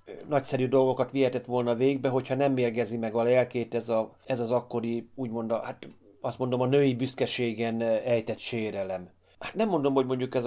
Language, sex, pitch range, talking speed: Hungarian, male, 110-130 Hz, 190 wpm